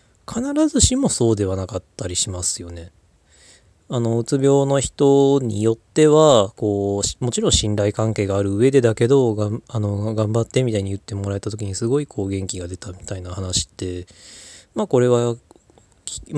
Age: 20-39